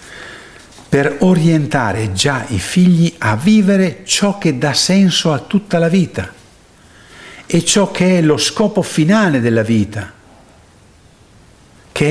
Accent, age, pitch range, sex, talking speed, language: native, 60-79, 110-170 Hz, male, 125 wpm, Italian